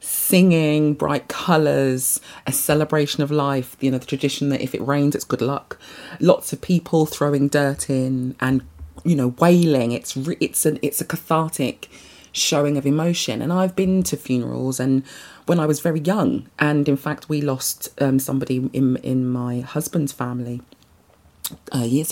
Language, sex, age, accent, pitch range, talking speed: English, female, 30-49, British, 140-180 Hz, 170 wpm